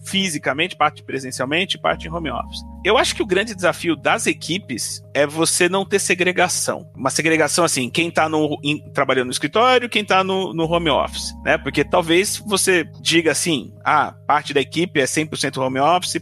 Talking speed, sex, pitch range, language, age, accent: 180 wpm, male, 150-205 Hz, Portuguese, 30-49, Brazilian